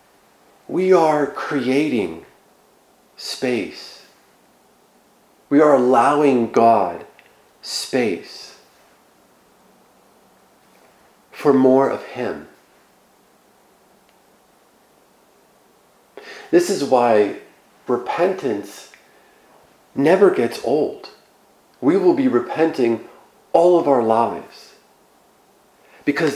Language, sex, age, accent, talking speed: English, male, 50-69, American, 65 wpm